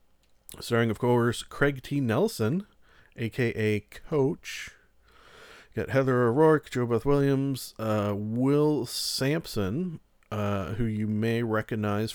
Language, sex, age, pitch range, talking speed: English, male, 40-59, 105-140 Hz, 115 wpm